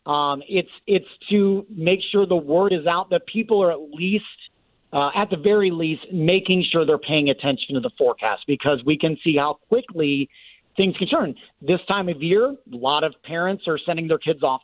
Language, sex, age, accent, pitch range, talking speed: English, male, 40-59, American, 145-185 Hz, 205 wpm